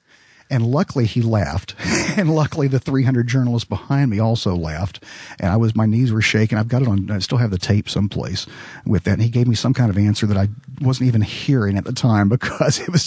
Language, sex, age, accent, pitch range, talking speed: English, male, 50-69, American, 100-130 Hz, 235 wpm